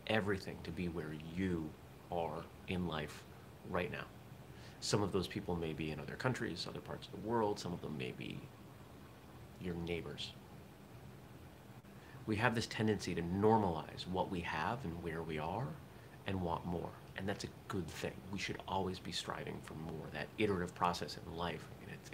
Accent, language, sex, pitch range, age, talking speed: American, English, male, 80-105 Hz, 30-49, 180 wpm